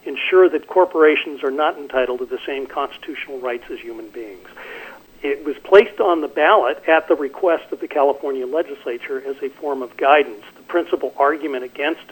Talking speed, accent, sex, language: 180 wpm, American, male, English